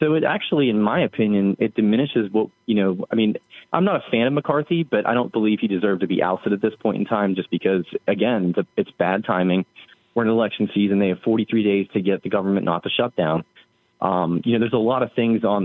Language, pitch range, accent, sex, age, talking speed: English, 100-120 Hz, American, male, 30-49, 245 wpm